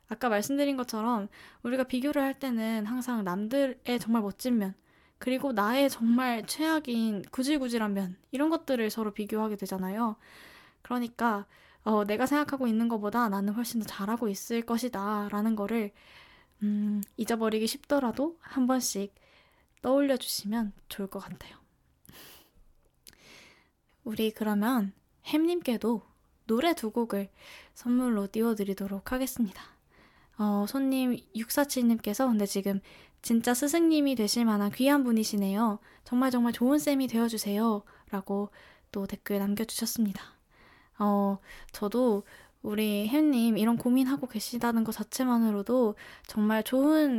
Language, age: Korean, 10-29